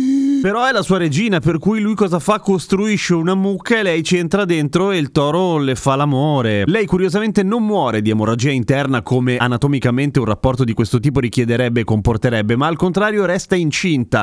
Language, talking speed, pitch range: Italian, 195 wpm, 125-175 Hz